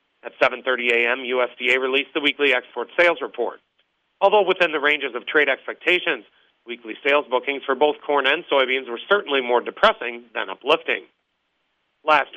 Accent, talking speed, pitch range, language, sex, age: American, 155 wpm, 125-155 Hz, English, male, 40-59